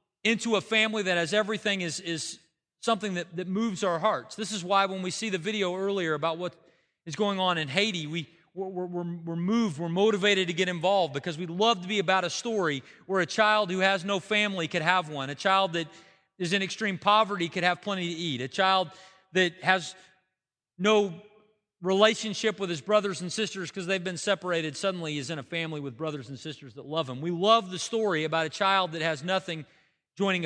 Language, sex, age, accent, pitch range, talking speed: English, male, 30-49, American, 170-205 Hz, 215 wpm